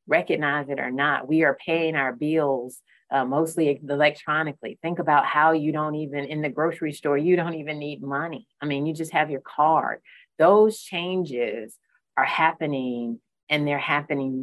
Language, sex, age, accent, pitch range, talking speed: English, female, 30-49, American, 135-165 Hz, 170 wpm